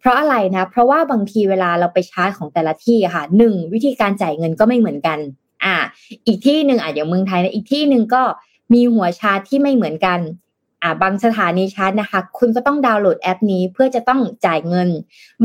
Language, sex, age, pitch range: Thai, female, 20-39, 175-230 Hz